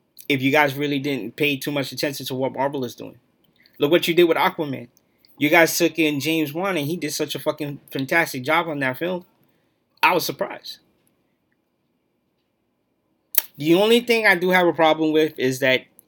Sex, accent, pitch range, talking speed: male, American, 130-160 Hz, 190 wpm